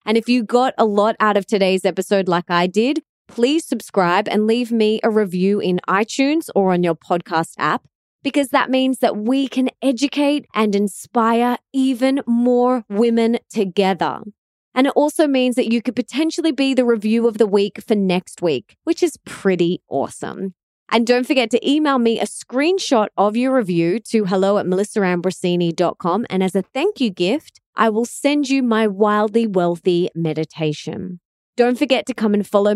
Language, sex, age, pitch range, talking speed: English, female, 20-39, 190-250 Hz, 175 wpm